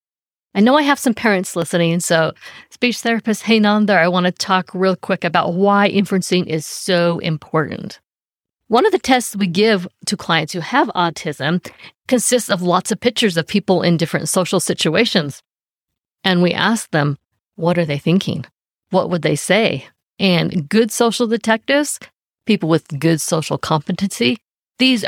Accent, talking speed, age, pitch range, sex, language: American, 165 wpm, 50-69, 165-200 Hz, female, English